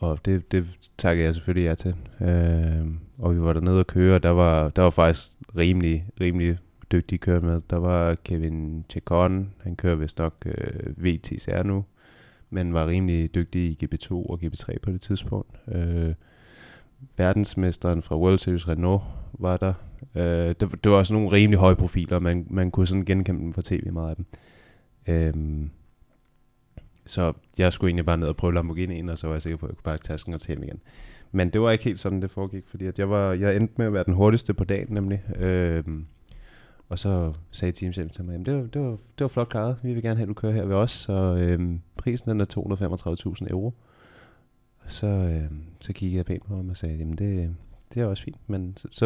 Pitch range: 85-100 Hz